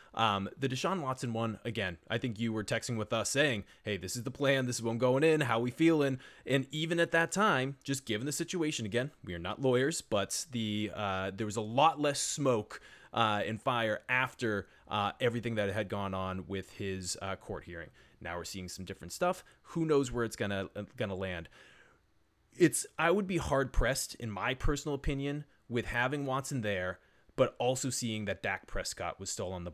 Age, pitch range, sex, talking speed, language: 20-39, 100-135 Hz, male, 210 wpm, English